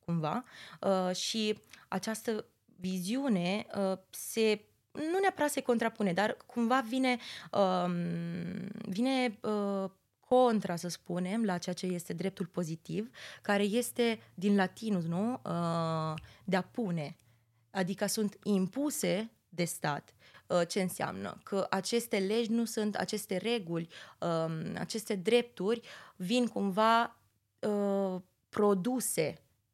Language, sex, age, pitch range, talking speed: Romanian, female, 20-39, 180-220 Hz, 100 wpm